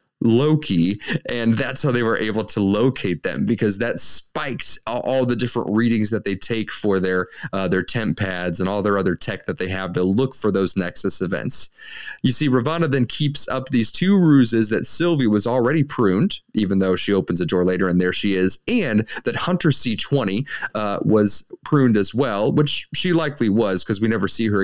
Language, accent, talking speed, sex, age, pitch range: English, American, 205 wpm, male, 30-49, 105-150 Hz